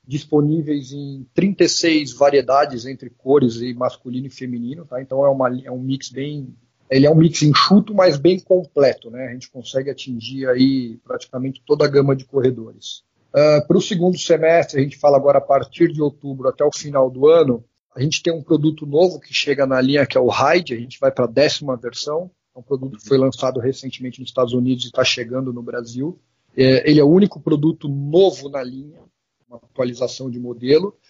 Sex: male